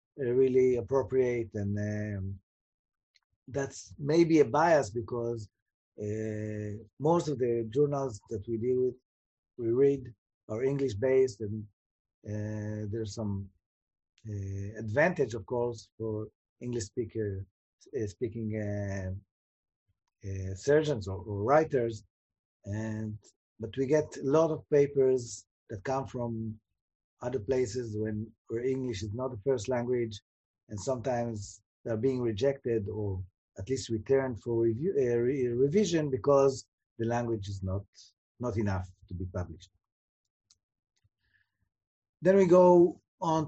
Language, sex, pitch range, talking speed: English, male, 105-130 Hz, 120 wpm